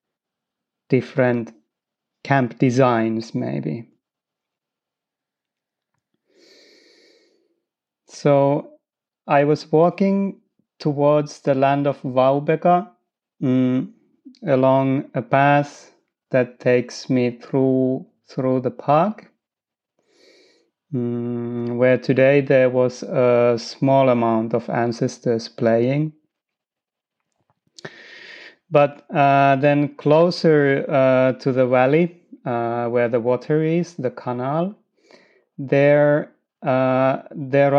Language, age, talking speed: Finnish, 30-49, 85 wpm